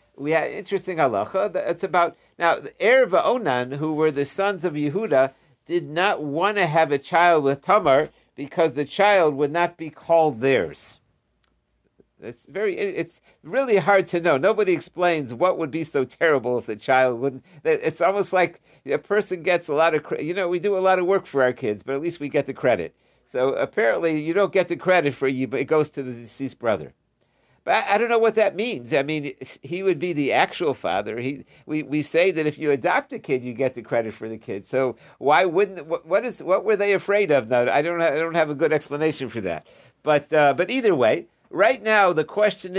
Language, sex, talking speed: English, male, 220 wpm